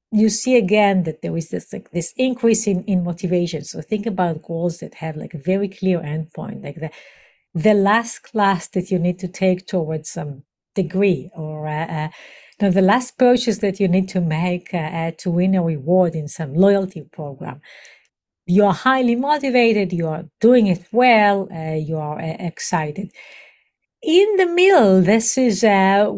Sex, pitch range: female, 175-220 Hz